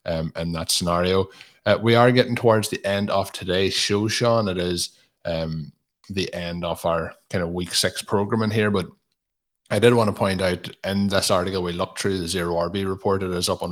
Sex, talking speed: male, 215 wpm